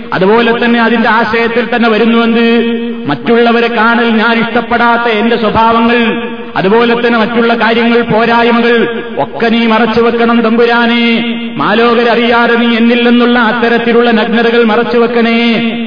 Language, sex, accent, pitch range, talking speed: Malayalam, male, native, 210-235 Hz, 100 wpm